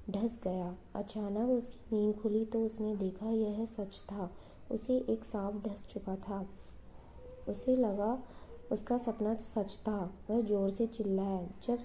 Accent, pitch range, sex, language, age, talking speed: native, 200-235 Hz, female, Hindi, 20-39, 140 wpm